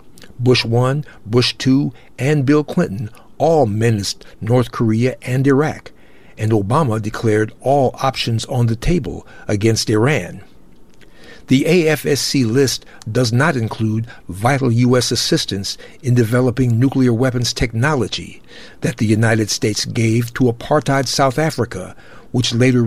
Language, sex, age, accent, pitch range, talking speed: English, male, 60-79, American, 110-130 Hz, 125 wpm